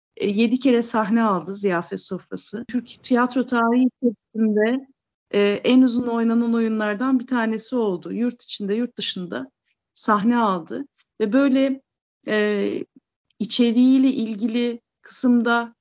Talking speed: 115 wpm